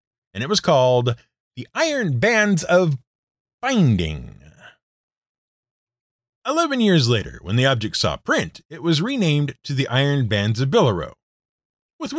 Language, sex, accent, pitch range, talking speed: English, male, American, 120-185 Hz, 135 wpm